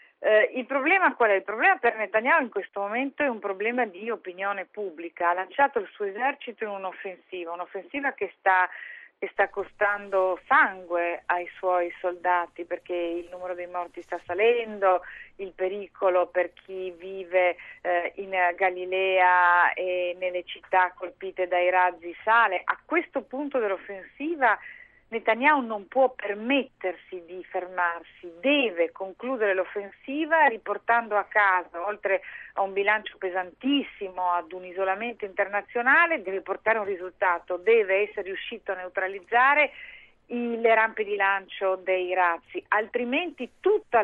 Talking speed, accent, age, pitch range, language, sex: 135 wpm, native, 40-59, 180-230 Hz, Italian, female